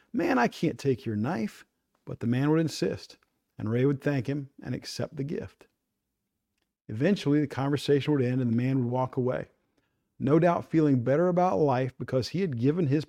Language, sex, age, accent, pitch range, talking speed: English, male, 40-59, American, 125-160 Hz, 195 wpm